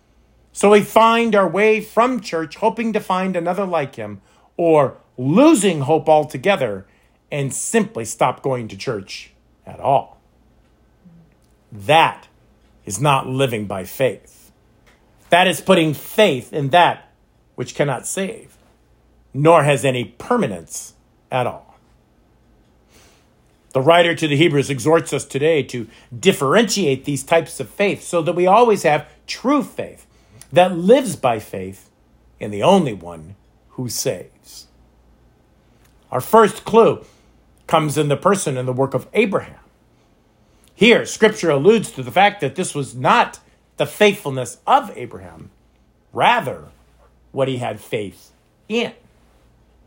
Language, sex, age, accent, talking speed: English, male, 50-69, American, 130 wpm